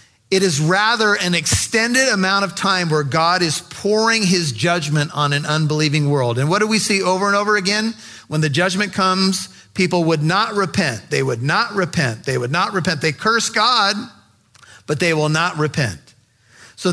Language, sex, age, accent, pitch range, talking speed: English, male, 40-59, American, 155-195 Hz, 185 wpm